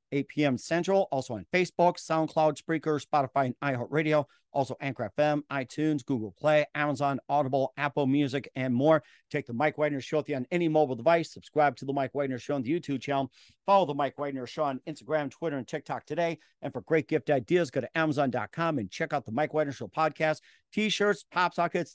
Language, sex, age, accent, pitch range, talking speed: English, male, 50-69, American, 135-160 Hz, 205 wpm